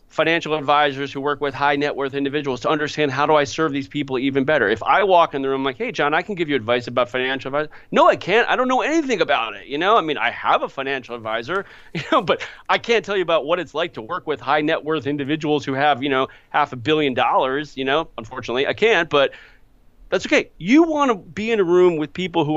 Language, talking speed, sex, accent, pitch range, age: English, 260 wpm, male, American, 140-190 Hz, 40-59